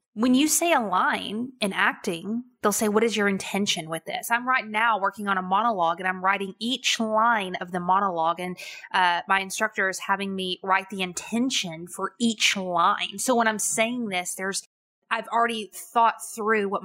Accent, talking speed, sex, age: American, 190 wpm, female, 20-39